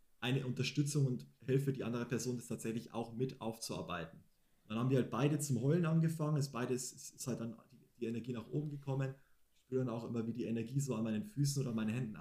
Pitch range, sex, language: 115-140 Hz, male, German